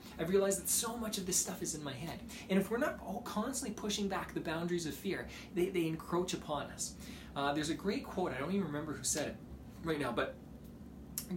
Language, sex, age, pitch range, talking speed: English, male, 20-39, 140-195 Hz, 235 wpm